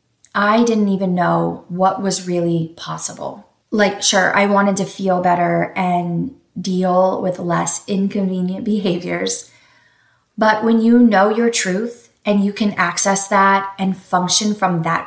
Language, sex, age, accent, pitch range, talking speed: English, female, 20-39, American, 175-210 Hz, 145 wpm